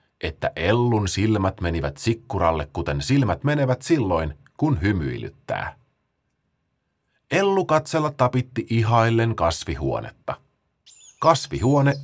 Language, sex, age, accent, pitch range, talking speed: Finnish, male, 30-49, native, 85-140 Hz, 85 wpm